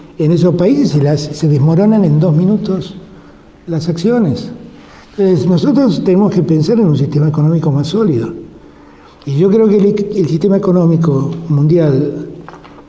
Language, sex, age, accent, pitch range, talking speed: Spanish, male, 60-79, Argentinian, 145-185 Hz, 140 wpm